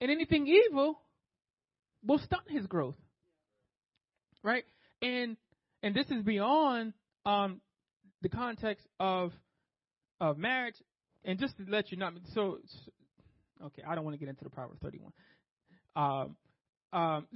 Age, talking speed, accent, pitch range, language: 30-49, 140 wpm, American, 155-210 Hz, English